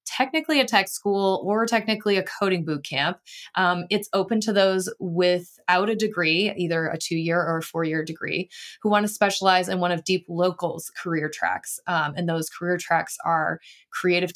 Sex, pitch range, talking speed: female, 165-200 Hz, 170 wpm